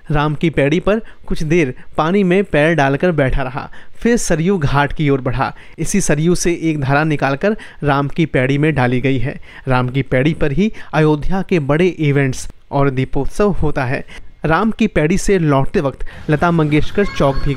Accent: native